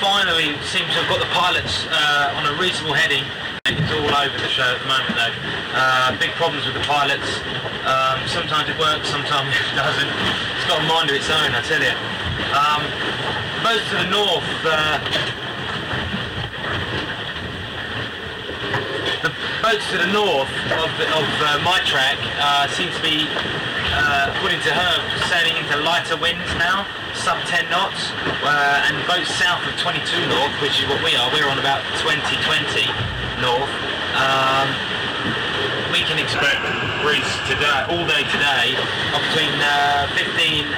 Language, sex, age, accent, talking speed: English, male, 20-39, British, 160 wpm